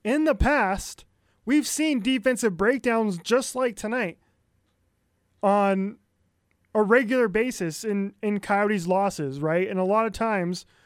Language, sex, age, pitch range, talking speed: English, male, 20-39, 170-225 Hz, 135 wpm